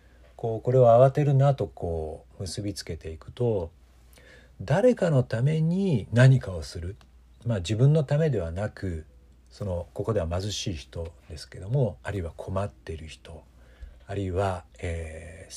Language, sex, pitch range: Japanese, male, 80-115 Hz